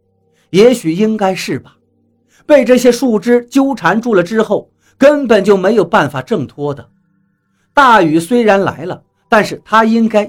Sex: male